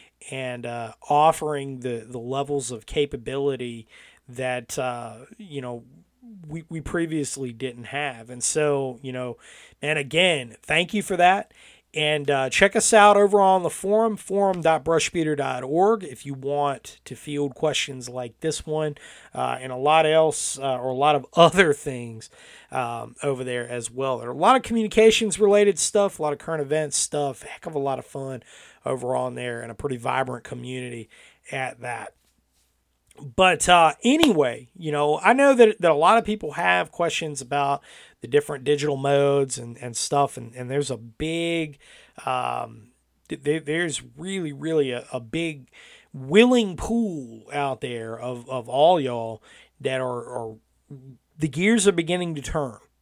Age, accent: 30-49, American